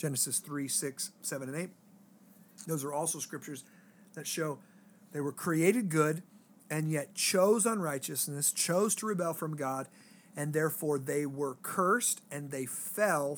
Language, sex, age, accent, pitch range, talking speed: English, male, 40-59, American, 150-205 Hz, 150 wpm